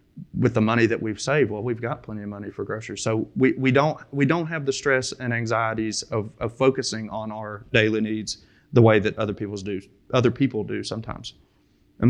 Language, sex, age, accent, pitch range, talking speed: English, male, 30-49, American, 110-140 Hz, 215 wpm